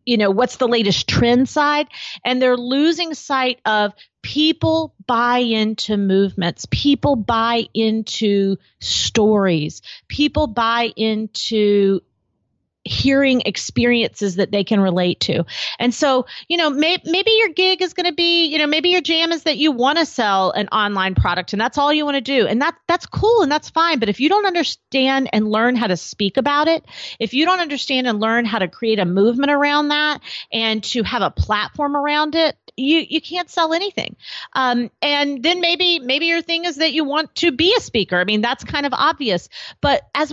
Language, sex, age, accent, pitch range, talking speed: English, female, 40-59, American, 215-300 Hz, 190 wpm